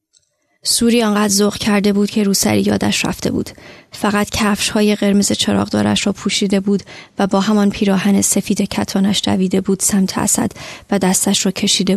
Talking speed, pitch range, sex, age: 160 wpm, 195-240 Hz, female, 30-49